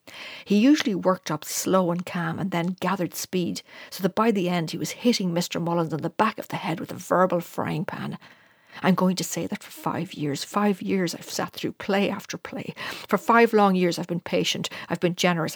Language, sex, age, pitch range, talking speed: English, female, 60-79, 175-220 Hz, 225 wpm